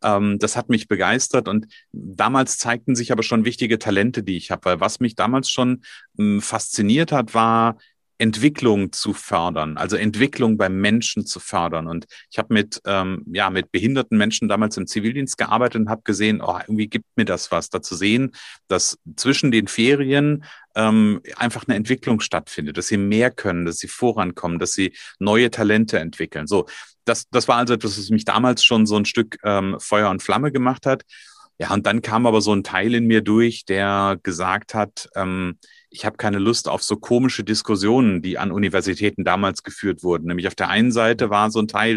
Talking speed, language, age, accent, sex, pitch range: 195 wpm, German, 40-59, German, male, 105-125 Hz